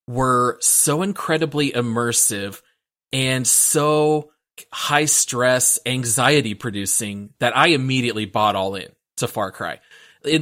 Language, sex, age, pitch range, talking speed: English, male, 30-49, 110-140 Hz, 105 wpm